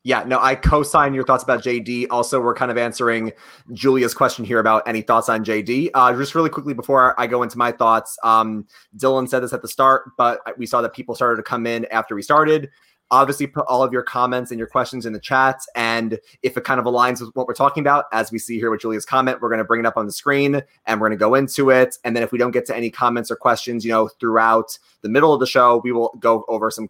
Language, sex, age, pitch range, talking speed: English, male, 20-39, 115-135 Hz, 265 wpm